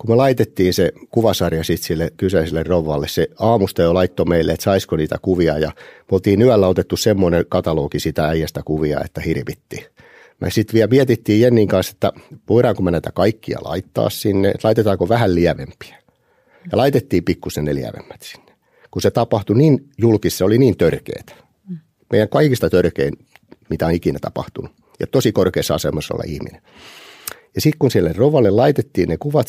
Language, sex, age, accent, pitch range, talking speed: Finnish, male, 50-69, native, 85-115 Hz, 165 wpm